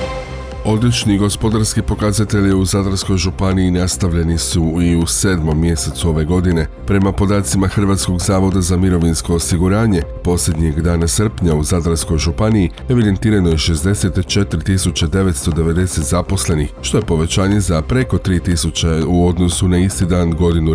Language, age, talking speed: Croatian, 40-59, 125 wpm